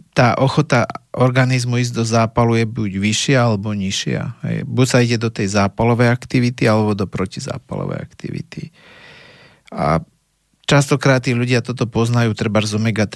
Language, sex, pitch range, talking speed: Slovak, male, 105-130 Hz, 140 wpm